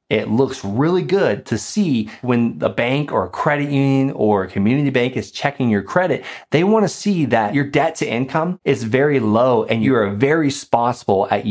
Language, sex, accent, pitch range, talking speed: English, male, American, 110-140 Hz, 200 wpm